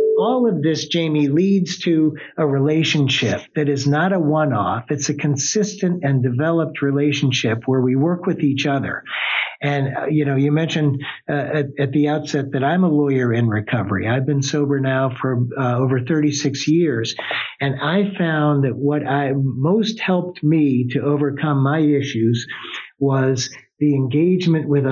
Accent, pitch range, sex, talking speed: American, 130-155 Hz, male, 165 wpm